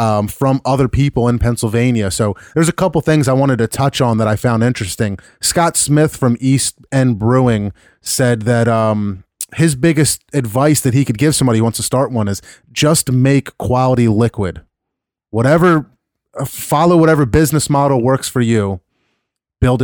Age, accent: 30-49, American